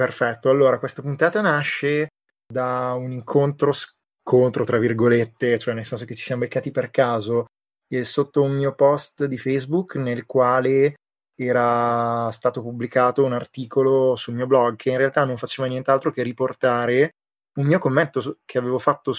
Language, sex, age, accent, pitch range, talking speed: Italian, male, 20-39, native, 120-140 Hz, 155 wpm